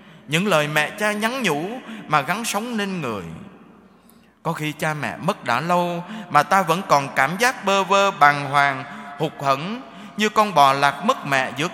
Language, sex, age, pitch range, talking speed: Vietnamese, male, 20-39, 150-210 Hz, 190 wpm